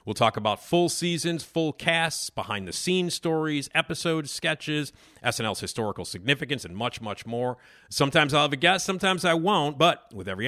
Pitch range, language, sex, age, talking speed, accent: 110-150 Hz, English, male, 50-69, 165 wpm, American